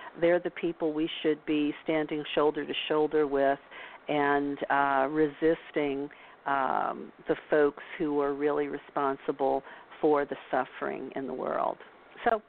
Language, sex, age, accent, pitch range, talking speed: English, female, 50-69, American, 145-180 Hz, 135 wpm